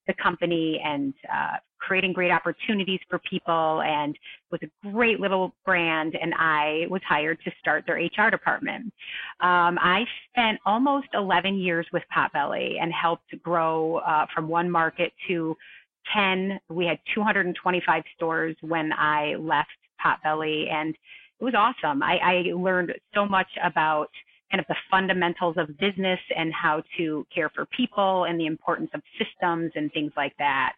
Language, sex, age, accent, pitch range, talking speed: English, female, 30-49, American, 170-205 Hz, 155 wpm